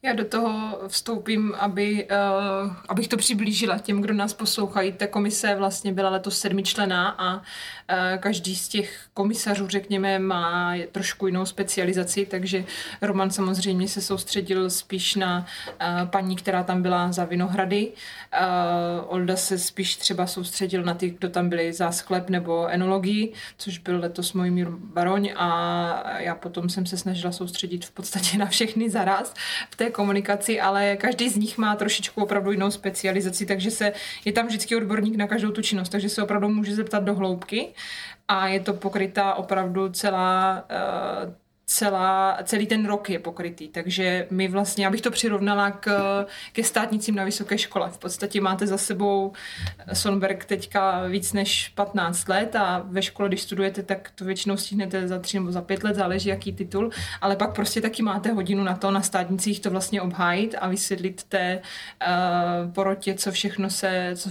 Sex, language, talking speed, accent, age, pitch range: female, Czech, 165 wpm, native, 20-39, 185-205 Hz